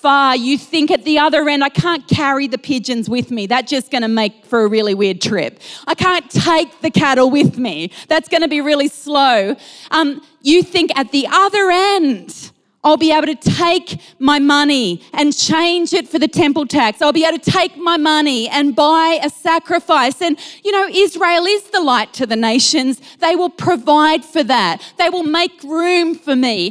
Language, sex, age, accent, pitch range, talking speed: English, female, 30-49, Australian, 250-330 Hz, 200 wpm